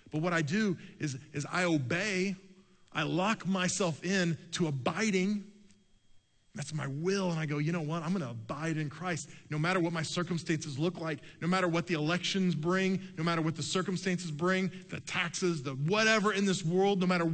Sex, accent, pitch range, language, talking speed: male, American, 145-185 Hz, English, 195 wpm